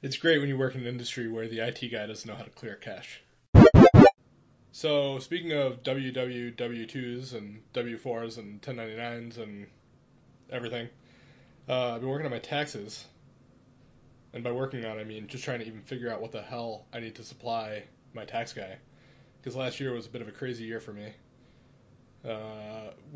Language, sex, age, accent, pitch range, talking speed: English, male, 20-39, American, 115-130 Hz, 185 wpm